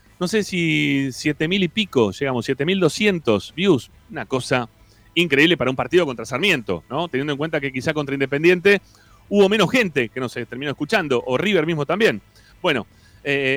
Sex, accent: male, Argentinian